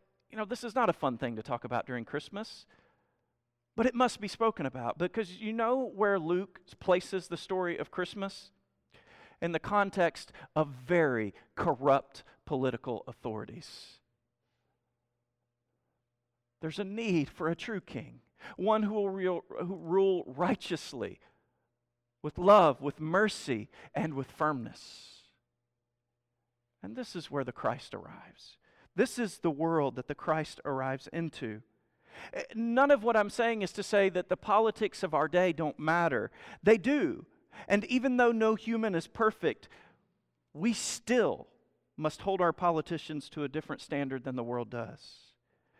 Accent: American